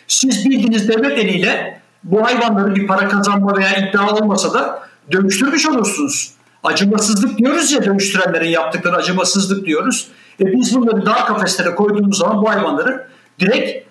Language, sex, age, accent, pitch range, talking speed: Turkish, male, 60-79, native, 170-230 Hz, 140 wpm